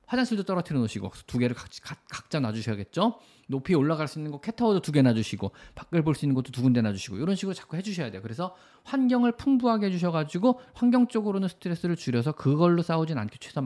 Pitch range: 115-190 Hz